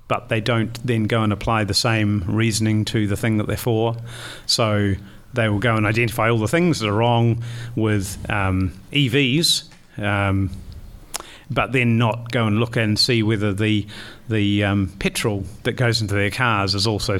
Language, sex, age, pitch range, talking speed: English, male, 30-49, 105-120 Hz, 180 wpm